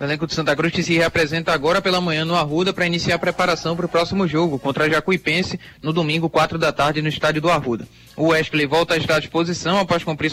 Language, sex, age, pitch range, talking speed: Portuguese, male, 20-39, 160-175 Hz, 240 wpm